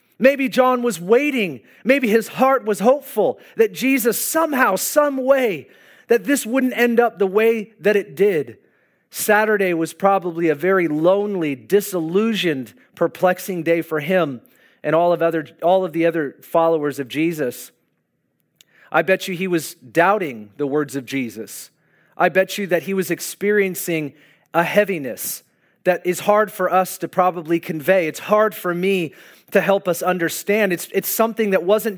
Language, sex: English, male